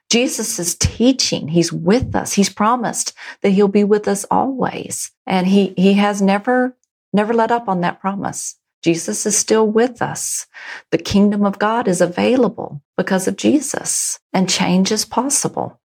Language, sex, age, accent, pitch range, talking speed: English, female, 40-59, American, 170-215 Hz, 165 wpm